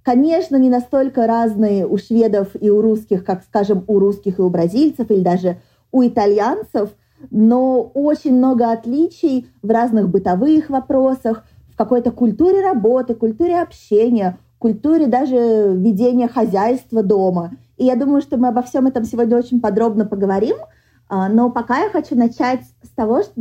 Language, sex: Russian, female